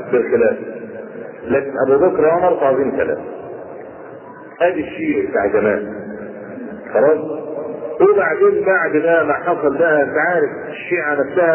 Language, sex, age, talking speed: Arabic, male, 50-69, 110 wpm